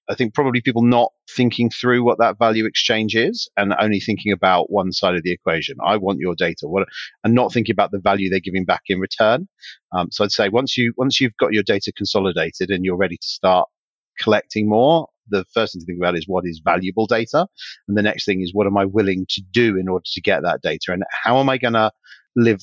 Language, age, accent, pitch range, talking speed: English, 30-49, British, 95-120 Hz, 240 wpm